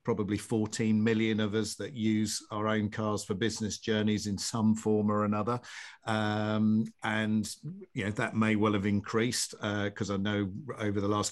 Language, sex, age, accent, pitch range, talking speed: English, male, 50-69, British, 105-125 Hz, 180 wpm